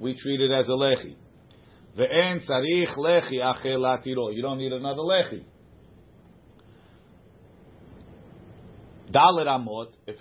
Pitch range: 130-165 Hz